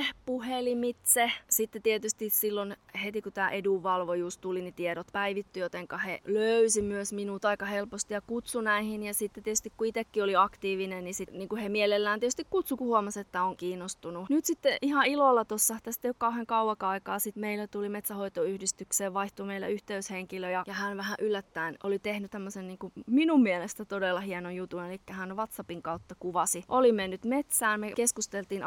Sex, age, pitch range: female, 20-39, 190-220 Hz